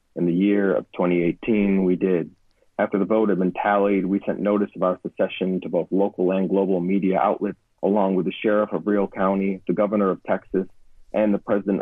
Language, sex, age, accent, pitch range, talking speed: English, male, 40-59, American, 90-100 Hz, 205 wpm